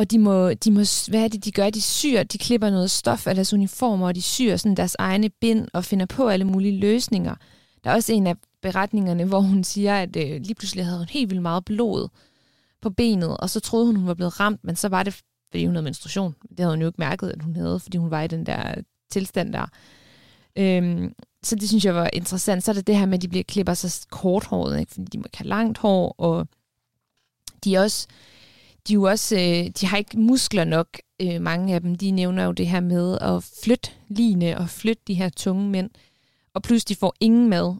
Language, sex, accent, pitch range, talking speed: Danish, female, native, 175-210 Hz, 230 wpm